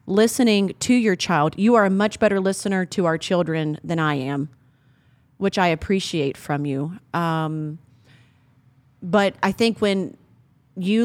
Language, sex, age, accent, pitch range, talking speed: English, female, 30-49, American, 155-220 Hz, 145 wpm